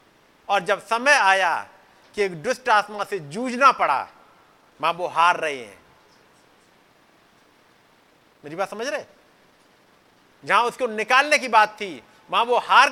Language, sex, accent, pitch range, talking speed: Hindi, male, native, 185-245 Hz, 130 wpm